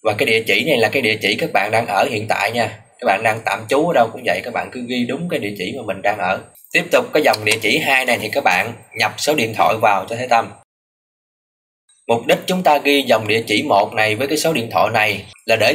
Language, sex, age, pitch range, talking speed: Vietnamese, male, 20-39, 105-130 Hz, 280 wpm